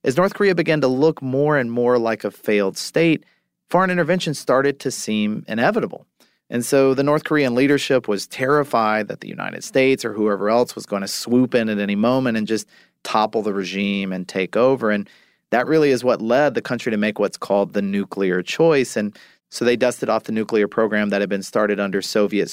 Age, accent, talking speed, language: 40-59, American, 210 wpm, English